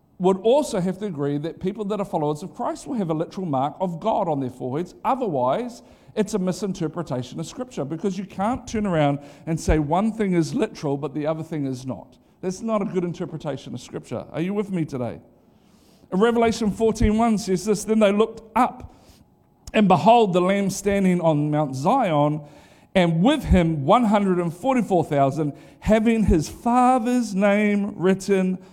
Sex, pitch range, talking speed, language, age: male, 155-205 Hz, 170 wpm, English, 50-69